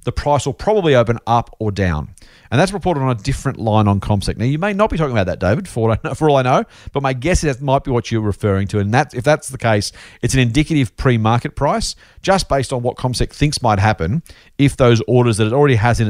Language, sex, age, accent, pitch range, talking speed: English, male, 40-59, Australian, 100-135 Hz, 270 wpm